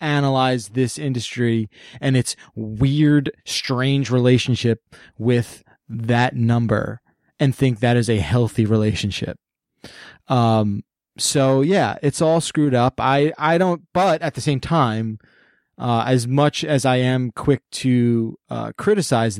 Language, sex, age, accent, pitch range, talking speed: English, male, 20-39, American, 125-160 Hz, 135 wpm